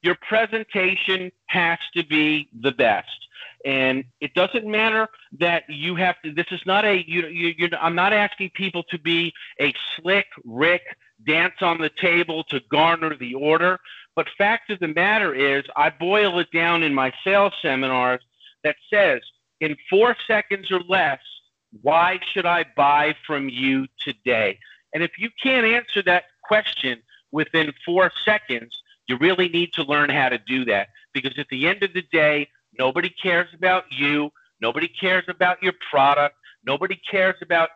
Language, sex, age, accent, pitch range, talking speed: English, male, 50-69, American, 145-185 Hz, 160 wpm